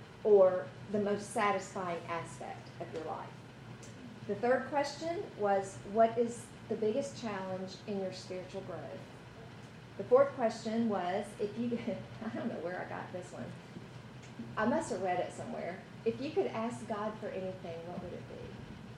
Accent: American